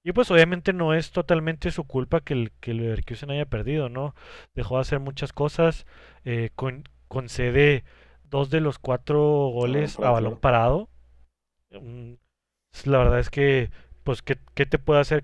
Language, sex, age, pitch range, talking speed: Spanish, male, 30-49, 120-145 Hz, 160 wpm